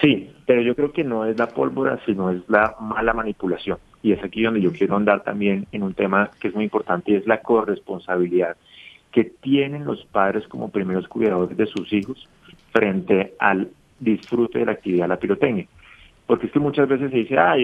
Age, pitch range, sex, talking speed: 30-49, 100-125 Hz, male, 200 wpm